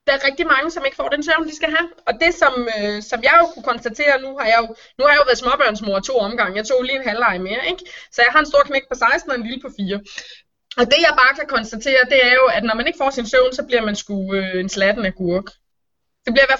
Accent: native